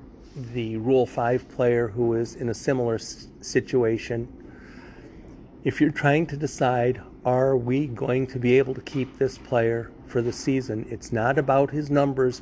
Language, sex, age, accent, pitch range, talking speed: English, male, 50-69, American, 120-135 Hz, 160 wpm